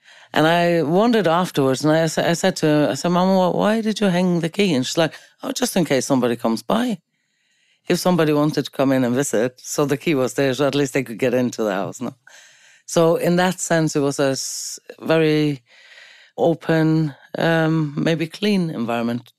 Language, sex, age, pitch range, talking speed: English, female, 30-49, 120-160 Hz, 200 wpm